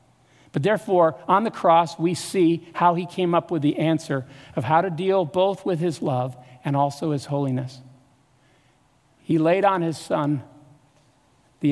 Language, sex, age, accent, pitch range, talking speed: English, male, 50-69, American, 140-175 Hz, 165 wpm